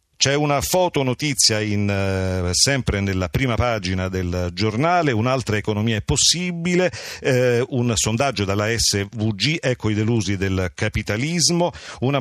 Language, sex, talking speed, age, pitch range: Italian, male, 125 wpm, 50-69, 100-130 Hz